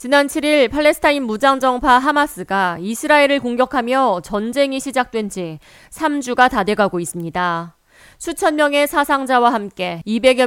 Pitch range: 200-270 Hz